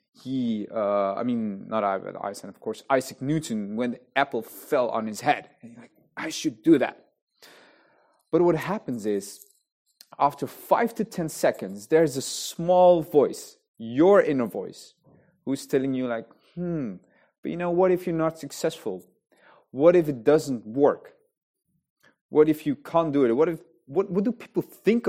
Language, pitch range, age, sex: English, 115-170 Hz, 30-49, male